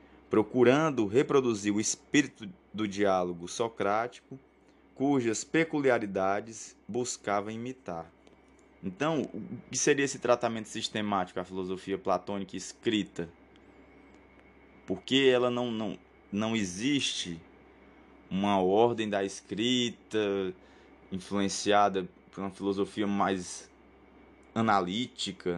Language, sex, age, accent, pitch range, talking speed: Portuguese, male, 20-39, Brazilian, 100-130 Hz, 85 wpm